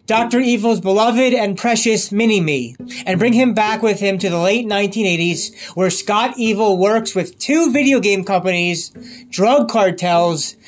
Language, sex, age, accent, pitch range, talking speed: English, male, 30-49, American, 185-245 Hz, 150 wpm